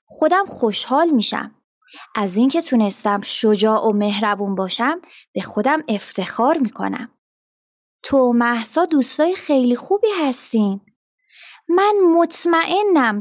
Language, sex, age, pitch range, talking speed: Persian, female, 20-39, 220-285 Hz, 100 wpm